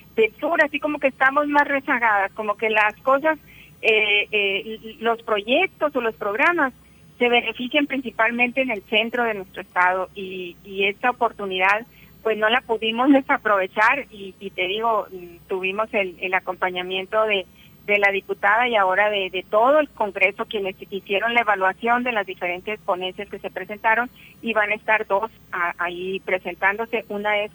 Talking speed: 160 wpm